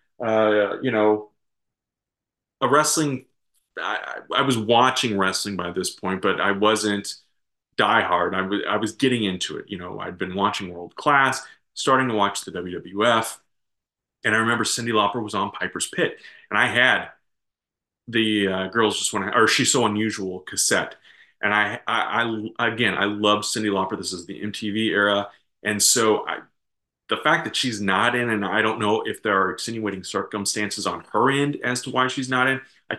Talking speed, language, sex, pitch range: 180 wpm, English, male, 100-115 Hz